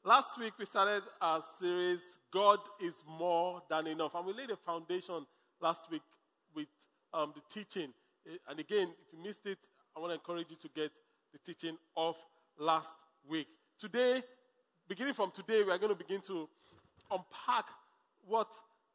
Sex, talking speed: male, 165 wpm